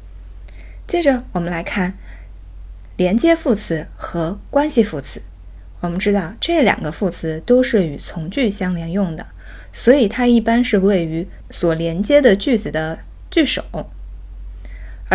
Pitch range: 165-240 Hz